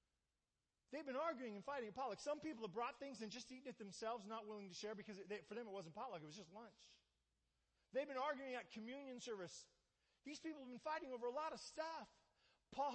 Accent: American